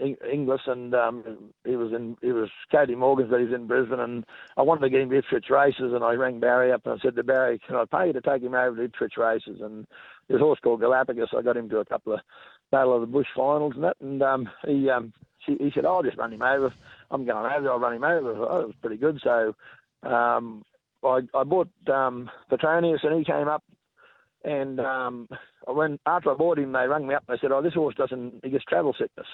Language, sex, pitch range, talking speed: English, male, 120-145 Hz, 250 wpm